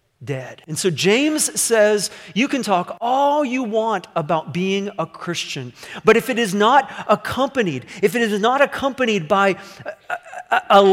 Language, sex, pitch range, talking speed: English, male, 175-240 Hz, 160 wpm